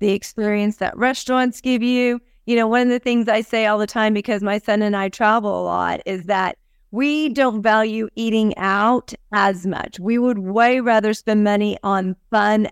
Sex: female